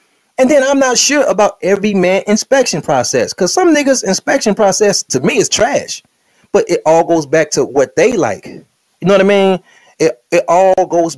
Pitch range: 140-210 Hz